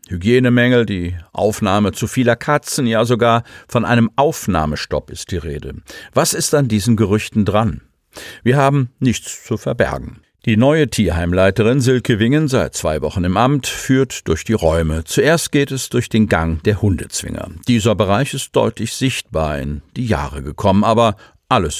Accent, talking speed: German, 160 wpm